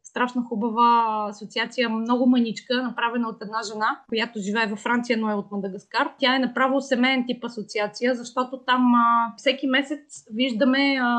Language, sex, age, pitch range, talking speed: Bulgarian, female, 20-39, 220-260 Hz, 155 wpm